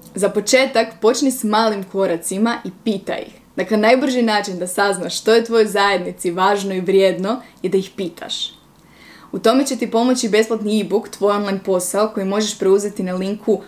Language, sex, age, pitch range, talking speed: Croatian, female, 20-39, 195-225 Hz, 180 wpm